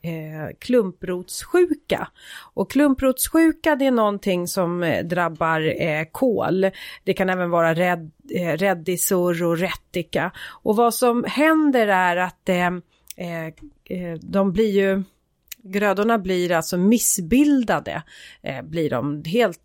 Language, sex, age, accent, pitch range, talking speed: Swedish, female, 30-49, native, 175-240 Hz, 120 wpm